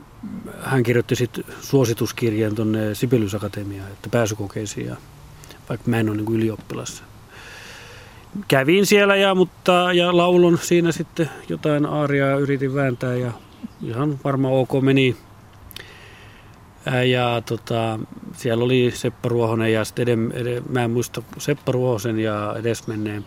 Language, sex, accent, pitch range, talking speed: Finnish, male, native, 110-135 Hz, 105 wpm